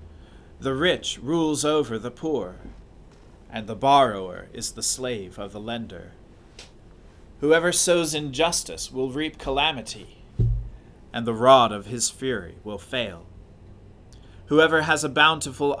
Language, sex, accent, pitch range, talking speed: English, male, American, 100-140 Hz, 125 wpm